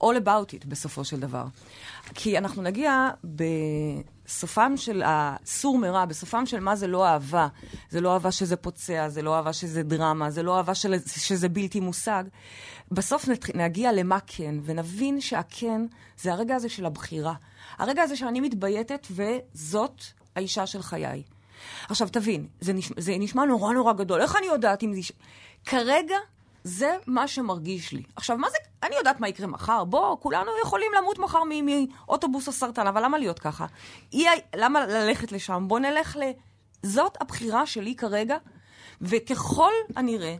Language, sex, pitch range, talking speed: Hebrew, female, 180-260 Hz, 160 wpm